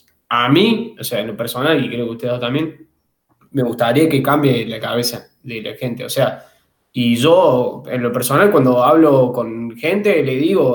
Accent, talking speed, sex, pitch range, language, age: Argentinian, 190 wpm, male, 120-150 Hz, Spanish, 20-39